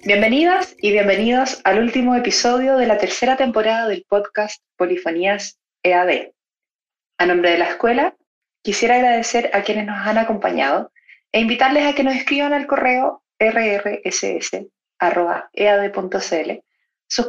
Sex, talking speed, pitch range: female, 125 wpm, 200-260 Hz